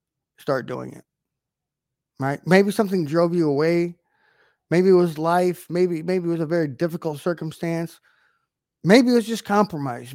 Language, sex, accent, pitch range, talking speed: English, male, American, 145-185 Hz, 155 wpm